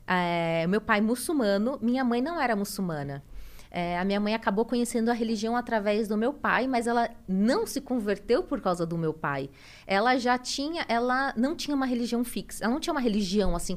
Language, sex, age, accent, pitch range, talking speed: Portuguese, female, 20-39, Brazilian, 190-255 Hz, 190 wpm